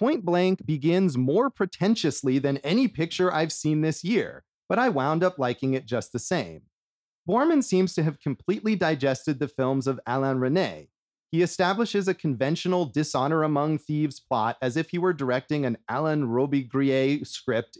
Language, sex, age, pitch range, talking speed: English, male, 30-49, 125-165 Hz, 165 wpm